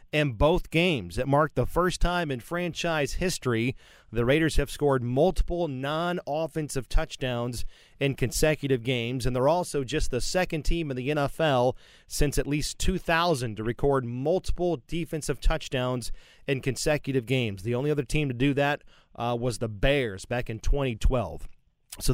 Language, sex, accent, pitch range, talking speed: English, male, American, 125-155 Hz, 155 wpm